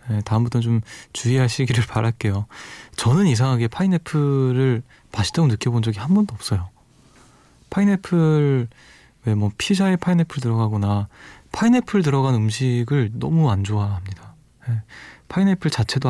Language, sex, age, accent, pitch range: Korean, male, 20-39, native, 115-155 Hz